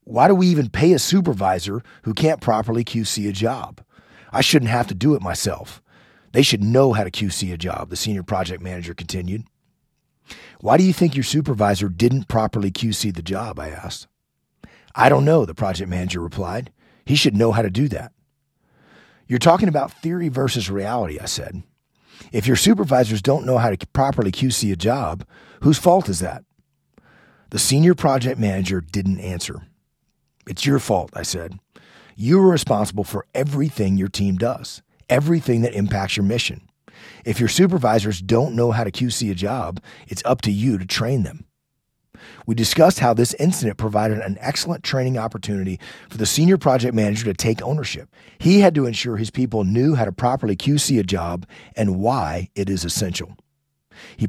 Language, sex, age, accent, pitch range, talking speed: English, male, 40-59, American, 100-135 Hz, 180 wpm